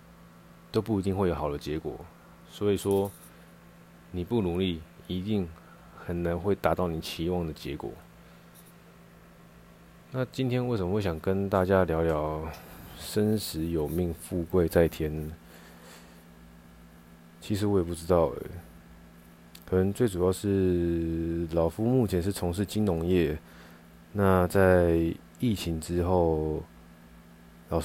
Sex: male